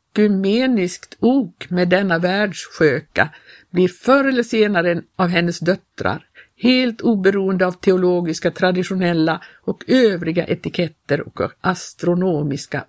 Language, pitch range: Swedish, 170-210 Hz